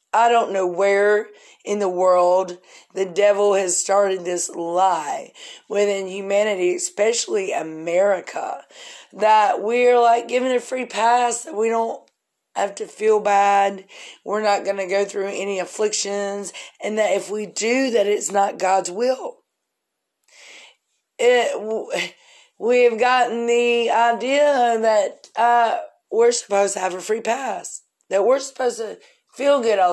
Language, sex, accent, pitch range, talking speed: English, female, American, 195-255 Hz, 140 wpm